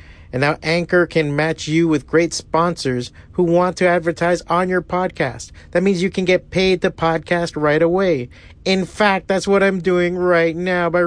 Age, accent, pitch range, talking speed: 40-59, American, 130-165 Hz, 190 wpm